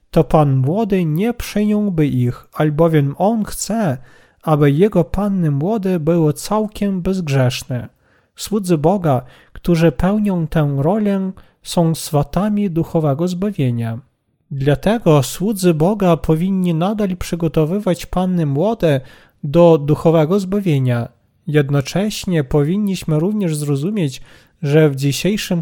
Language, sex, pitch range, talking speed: Polish, male, 145-190 Hz, 105 wpm